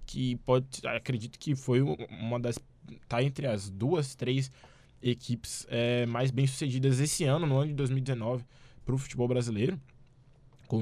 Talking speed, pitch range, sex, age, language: 155 wpm, 115-135 Hz, male, 20-39, Portuguese